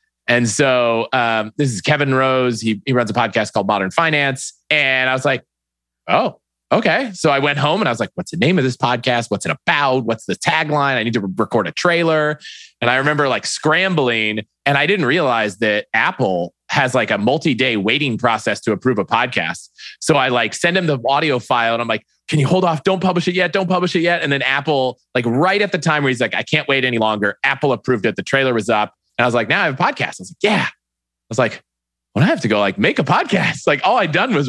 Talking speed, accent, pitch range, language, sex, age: 250 wpm, American, 110-145 Hz, English, male, 20-39